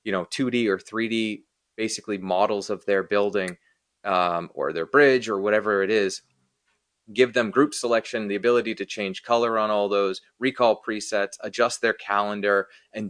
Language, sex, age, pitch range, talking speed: English, male, 30-49, 100-120 Hz, 165 wpm